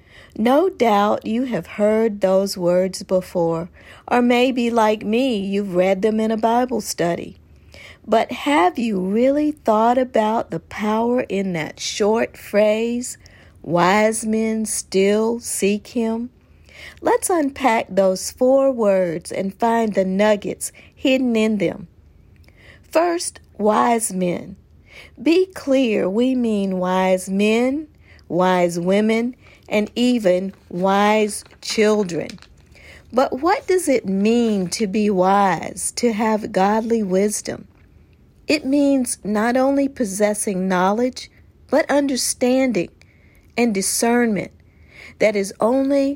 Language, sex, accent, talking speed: English, female, American, 115 wpm